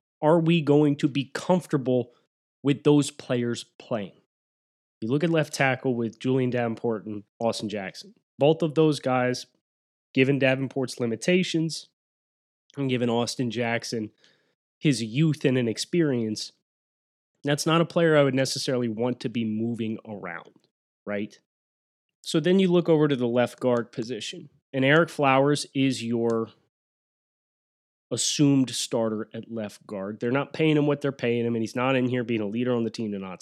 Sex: male